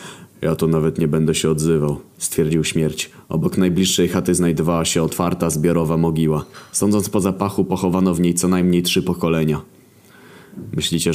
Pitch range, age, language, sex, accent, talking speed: 80-105 Hz, 30-49, Polish, male, native, 155 wpm